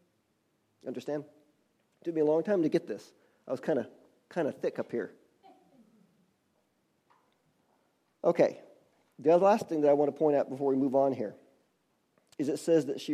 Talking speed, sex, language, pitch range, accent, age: 165 wpm, male, English, 125-160 Hz, American, 40-59